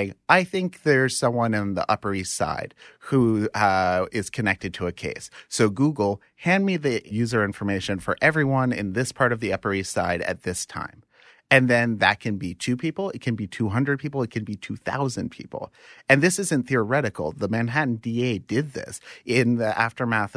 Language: English